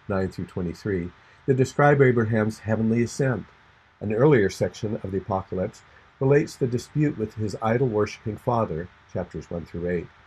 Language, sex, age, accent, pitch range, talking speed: English, male, 50-69, American, 95-120 Hz, 150 wpm